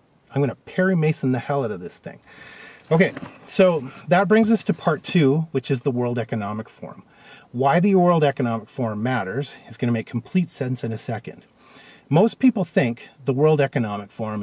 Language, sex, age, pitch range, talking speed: English, male, 40-59, 115-150 Hz, 195 wpm